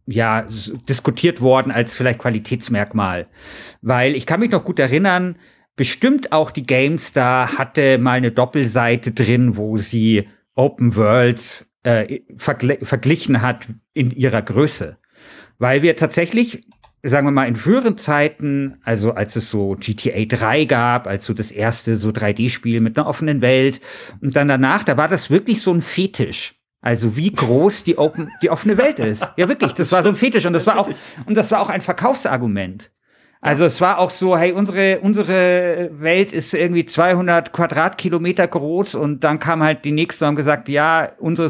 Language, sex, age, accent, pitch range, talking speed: German, male, 50-69, German, 125-175 Hz, 175 wpm